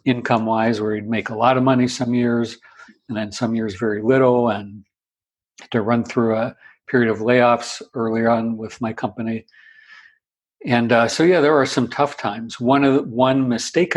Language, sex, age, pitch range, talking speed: English, male, 50-69, 110-130 Hz, 195 wpm